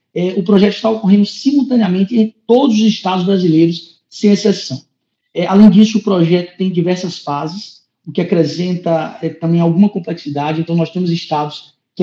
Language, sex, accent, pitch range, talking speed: Portuguese, male, Brazilian, 165-210 Hz, 165 wpm